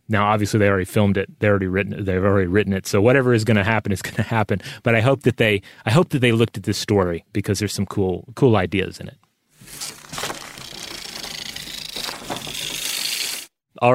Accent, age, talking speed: American, 30-49, 200 wpm